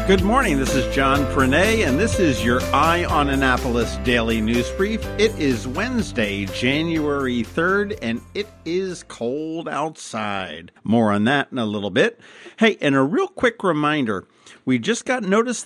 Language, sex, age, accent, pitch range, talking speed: English, male, 50-69, American, 115-160 Hz, 165 wpm